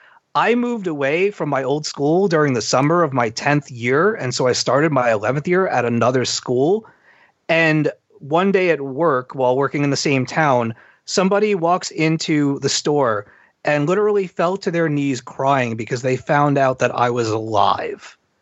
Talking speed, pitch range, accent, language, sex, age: 180 wpm, 125-155 Hz, American, English, male, 30-49